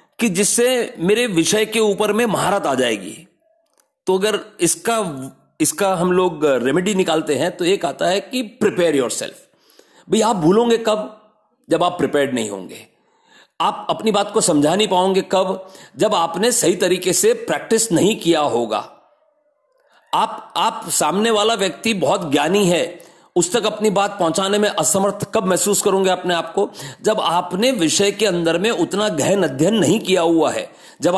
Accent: native